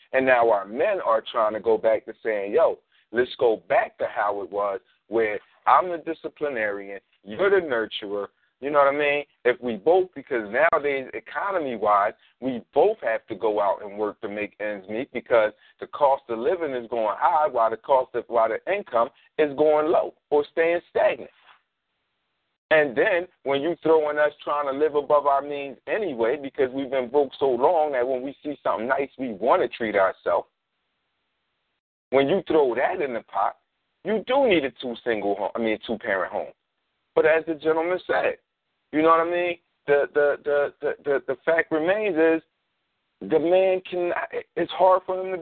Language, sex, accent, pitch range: English, male, American, 140-185 Hz